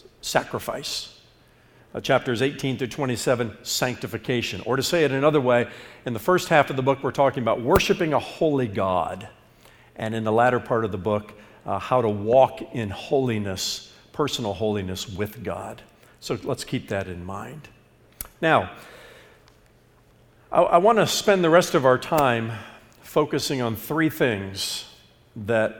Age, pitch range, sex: 50-69, 110-140 Hz, male